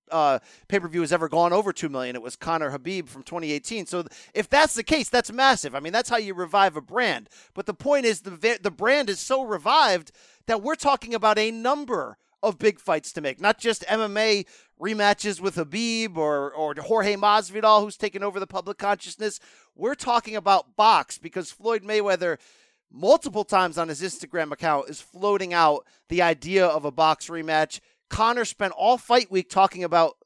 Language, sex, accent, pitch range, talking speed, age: English, male, American, 170-235 Hz, 190 wpm, 40-59